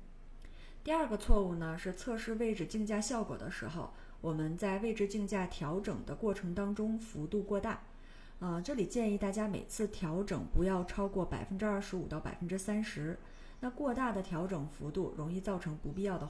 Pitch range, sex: 170-210 Hz, female